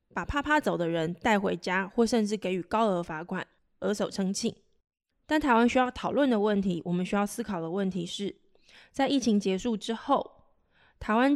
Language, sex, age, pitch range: Chinese, female, 20-39, 180-235 Hz